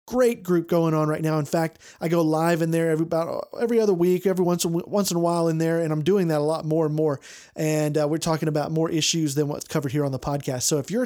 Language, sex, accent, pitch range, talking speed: English, male, American, 155-185 Hz, 295 wpm